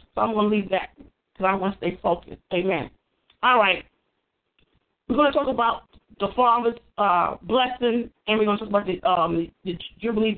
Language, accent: English, American